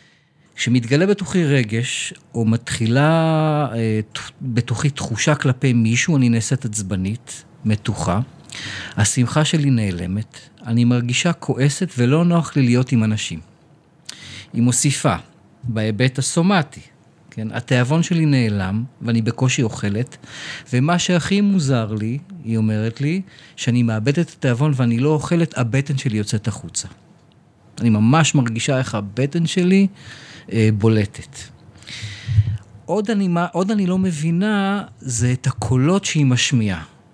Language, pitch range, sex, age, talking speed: Hebrew, 115-160 Hz, male, 40-59, 120 wpm